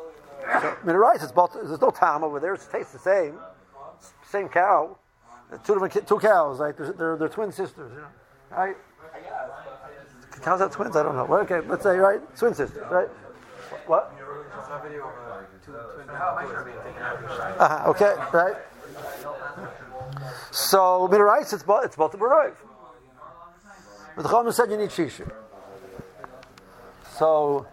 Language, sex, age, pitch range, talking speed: English, male, 50-69, 150-195 Hz, 145 wpm